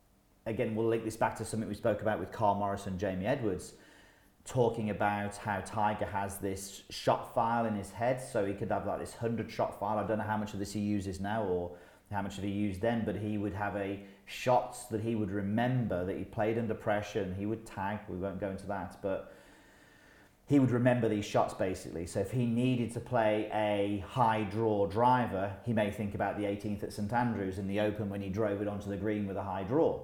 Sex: male